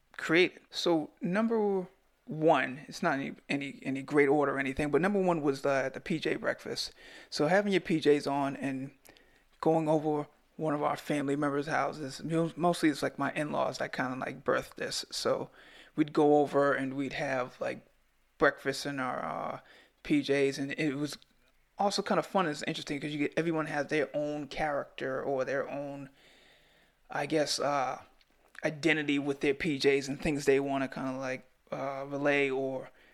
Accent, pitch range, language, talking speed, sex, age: American, 140-160 Hz, English, 175 wpm, male, 30-49